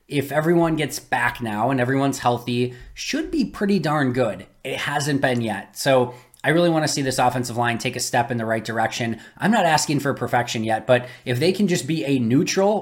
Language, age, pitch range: English, 20-39, 120-145 Hz